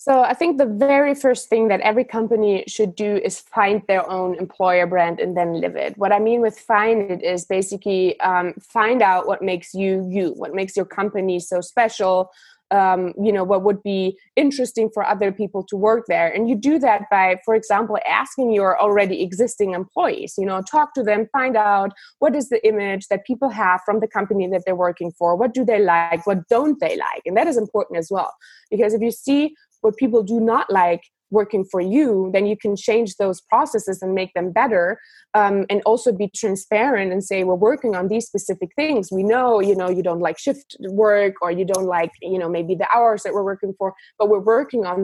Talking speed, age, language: 220 wpm, 20-39, German